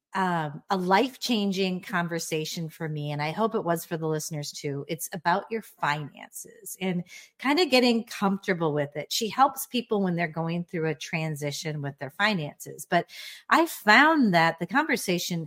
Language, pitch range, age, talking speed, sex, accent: English, 160-210 Hz, 40-59, 170 wpm, female, American